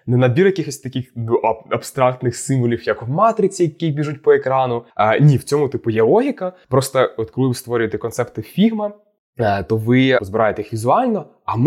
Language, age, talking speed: Ukrainian, 20-39, 175 wpm